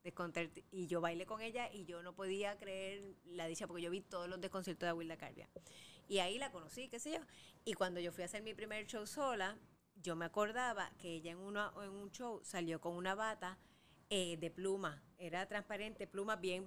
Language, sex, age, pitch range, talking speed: Spanish, female, 30-49, 175-215 Hz, 215 wpm